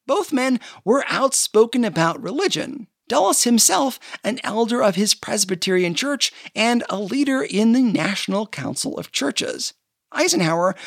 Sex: male